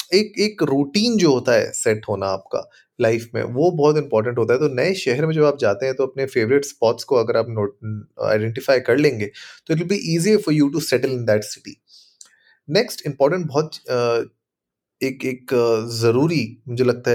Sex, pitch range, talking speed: male, 115-150 Hz, 100 wpm